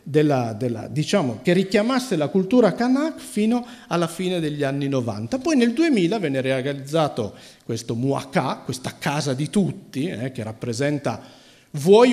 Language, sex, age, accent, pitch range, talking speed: Italian, male, 50-69, native, 135-220 Hz, 130 wpm